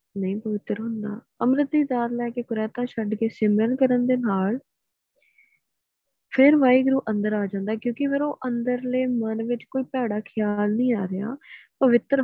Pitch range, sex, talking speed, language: 215-260 Hz, female, 155 wpm, Punjabi